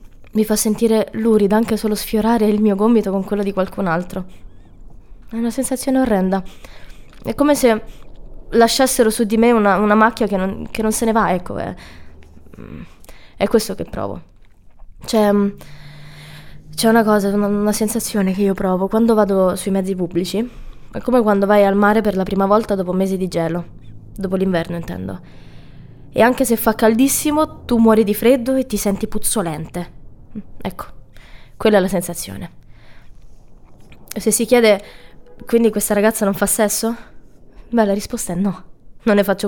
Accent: native